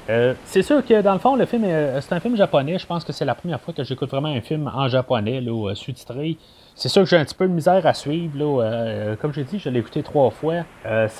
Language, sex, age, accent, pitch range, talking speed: French, male, 30-49, Canadian, 130-170 Hz, 300 wpm